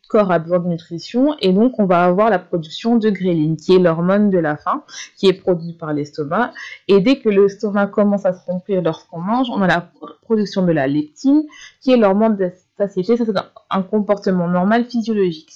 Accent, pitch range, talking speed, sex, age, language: French, 180-225 Hz, 210 wpm, female, 20-39, French